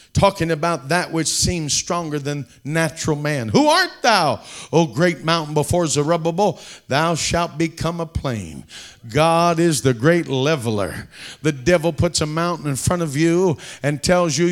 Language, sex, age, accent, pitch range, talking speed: English, male, 50-69, American, 160-200 Hz, 160 wpm